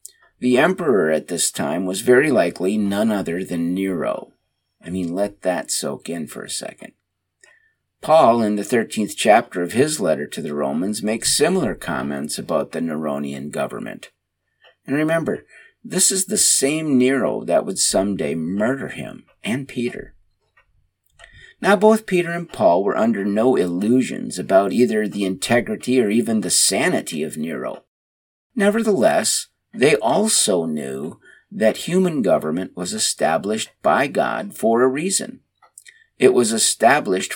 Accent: American